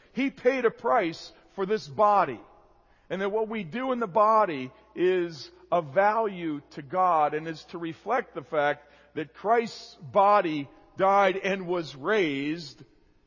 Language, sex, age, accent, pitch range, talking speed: English, male, 50-69, American, 170-245 Hz, 150 wpm